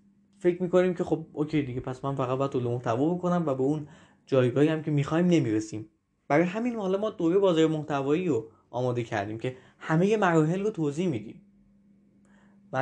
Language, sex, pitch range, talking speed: Persian, male, 125-170 Hz, 175 wpm